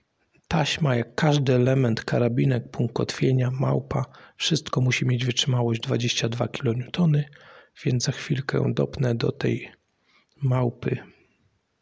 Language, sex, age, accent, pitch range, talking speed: Polish, male, 40-59, native, 125-150 Hz, 105 wpm